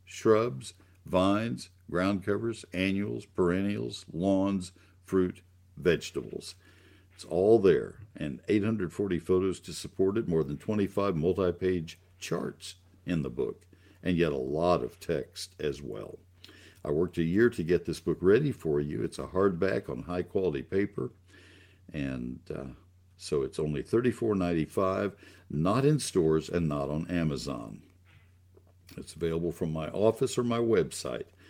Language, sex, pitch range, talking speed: English, male, 85-105 Hz, 135 wpm